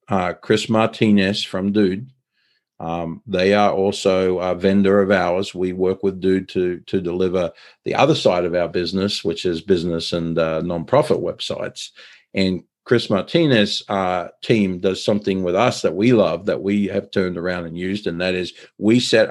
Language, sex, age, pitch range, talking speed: English, male, 50-69, 90-105 Hz, 175 wpm